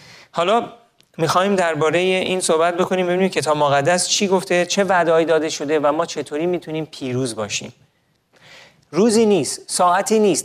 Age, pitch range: 30-49, 130-165 Hz